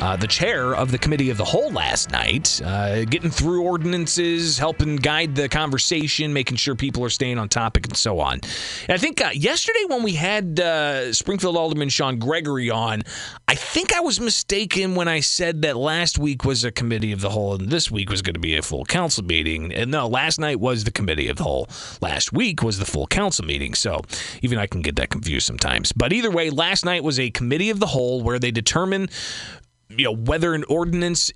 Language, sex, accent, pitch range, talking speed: English, male, American, 115-160 Hz, 215 wpm